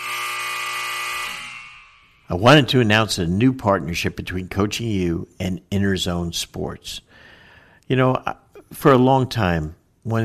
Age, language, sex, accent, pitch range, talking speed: 60-79, English, male, American, 85-115 Hz, 115 wpm